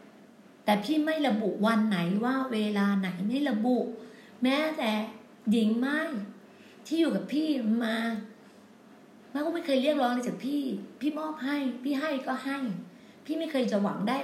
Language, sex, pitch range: Thai, female, 220-275 Hz